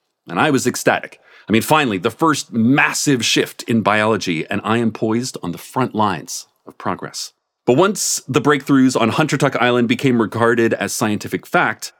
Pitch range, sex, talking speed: 115-165 Hz, male, 180 wpm